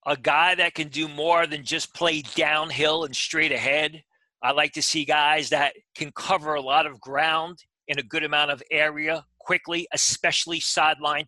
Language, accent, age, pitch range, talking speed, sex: English, American, 40-59, 150-175 Hz, 180 wpm, male